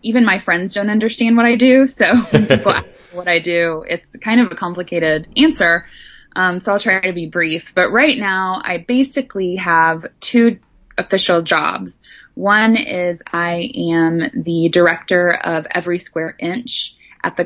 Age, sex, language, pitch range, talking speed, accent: 10-29, female, English, 170-205 Hz, 170 wpm, American